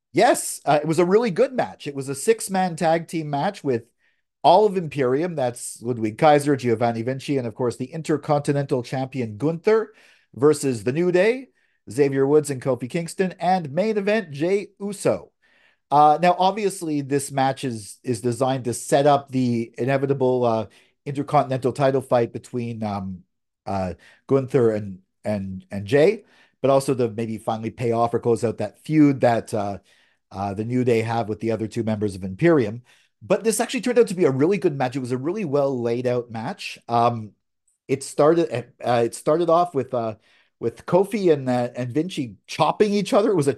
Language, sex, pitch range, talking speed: English, male, 120-170 Hz, 185 wpm